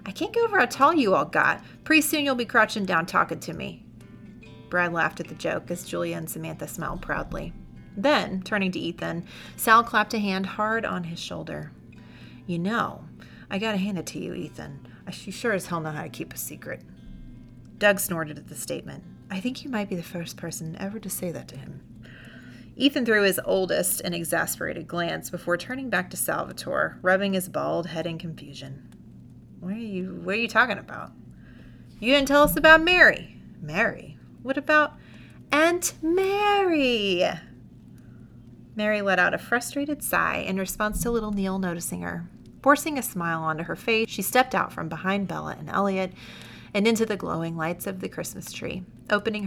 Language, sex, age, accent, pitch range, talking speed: English, female, 30-49, American, 165-230 Hz, 185 wpm